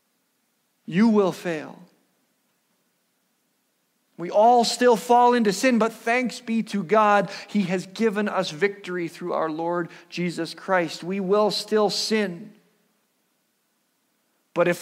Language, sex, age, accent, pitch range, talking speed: English, male, 50-69, American, 180-230 Hz, 120 wpm